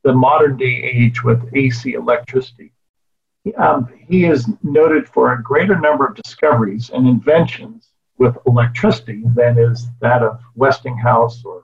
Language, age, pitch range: English, 50-69, 120-155 Hz